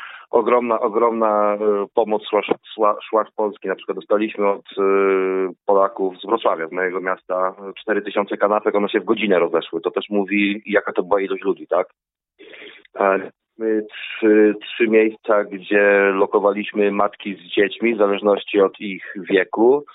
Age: 30-49